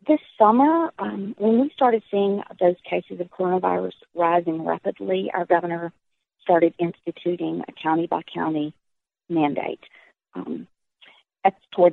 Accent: American